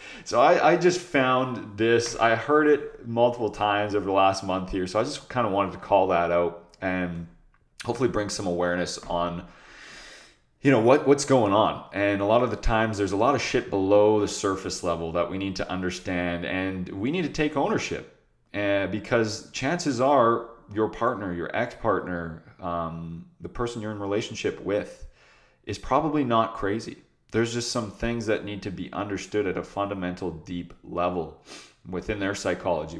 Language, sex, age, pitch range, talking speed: English, male, 30-49, 90-110 Hz, 185 wpm